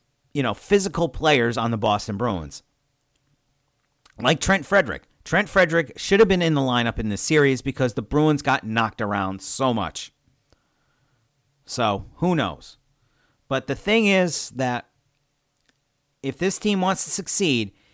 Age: 40-59